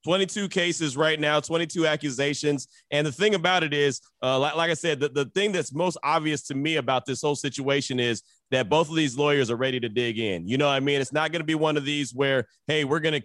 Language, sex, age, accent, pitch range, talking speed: English, male, 30-49, American, 140-175 Hz, 265 wpm